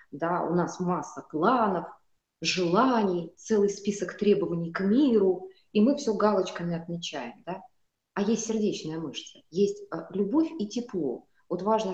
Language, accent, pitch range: Russian, native, 170-220 Hz